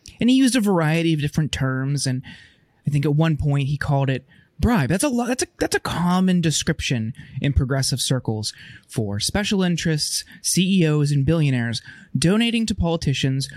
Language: English